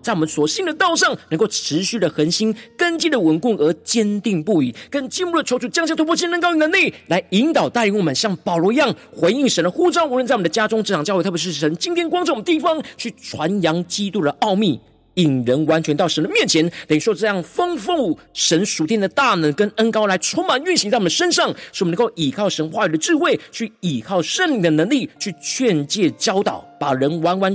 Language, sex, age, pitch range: Chinese, male, 40-59, 160-260 Hz